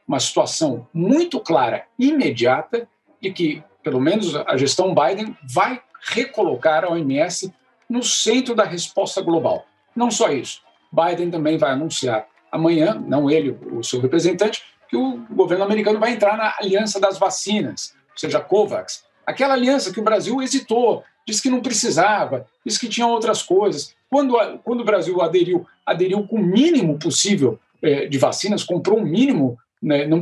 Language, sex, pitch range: Portuguese, male, 160-225 Hz